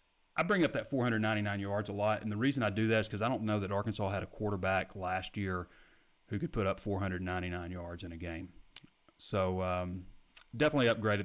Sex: male